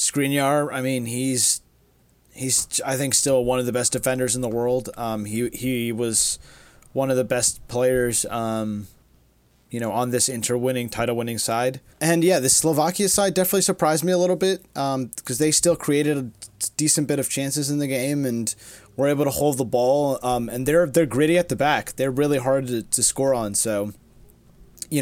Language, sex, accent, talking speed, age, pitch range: English, male, American, 195 wpm, 20-39, 115-145 Hz